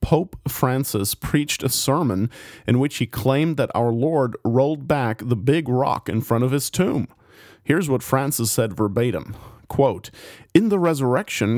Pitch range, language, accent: 110-135 Hz, English, American